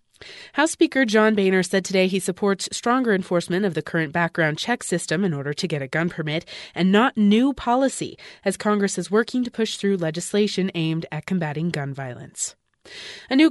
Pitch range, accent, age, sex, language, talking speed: 170-225 Hz, American, 30-49, female, English, 185 wpm